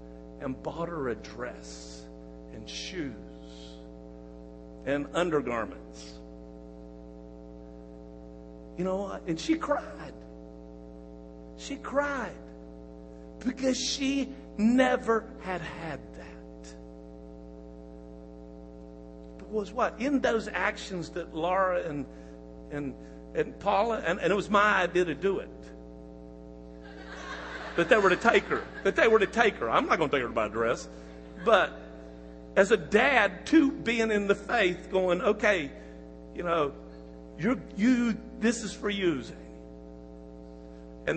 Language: English